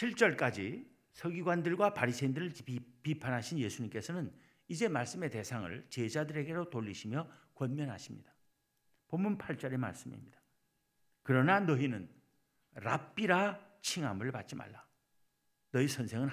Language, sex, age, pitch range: Korean, male, 50-69, 130-175 Hz